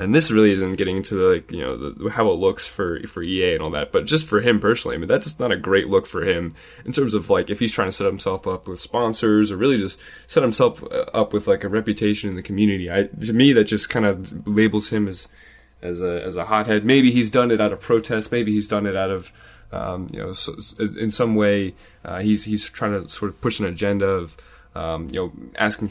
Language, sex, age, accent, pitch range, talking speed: English, male, 10-29, American, 95-115 Hz, 255 wpm